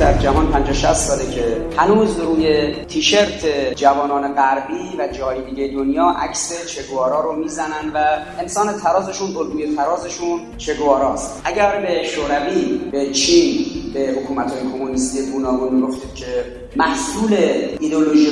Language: Persian